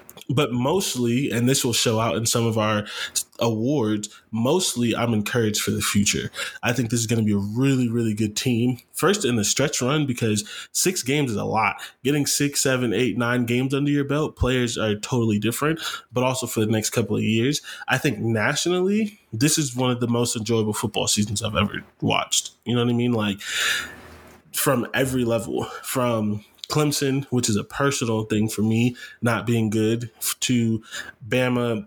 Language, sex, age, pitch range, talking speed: English, male, 20-39, 110-130 Hz, 190 wpm